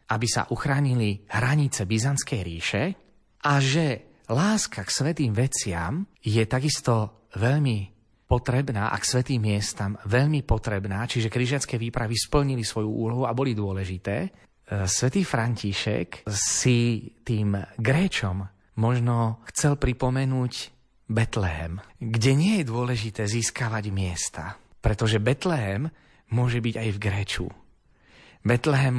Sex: male